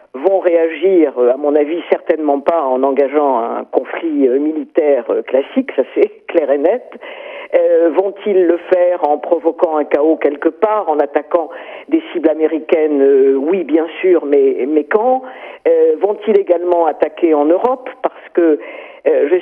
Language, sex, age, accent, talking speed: French, female, 50-69, French, 150 wpm